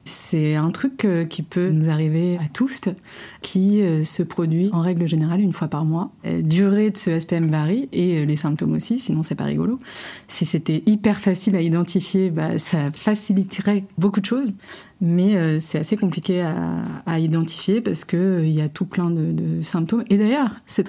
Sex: female